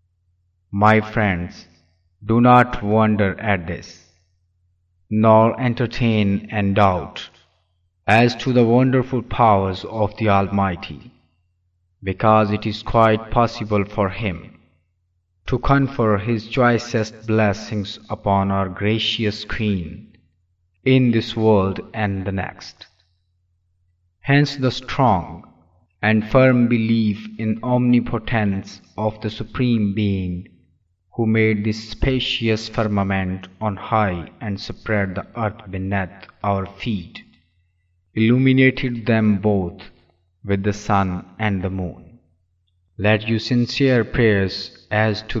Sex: male